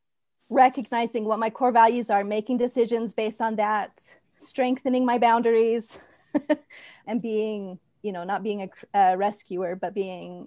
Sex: female